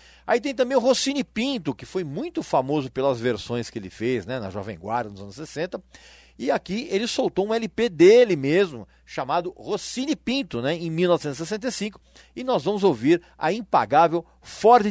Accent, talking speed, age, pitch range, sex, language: Brazilian, 175 wpm, 40-59, 135-220 Hz, male, Portuguese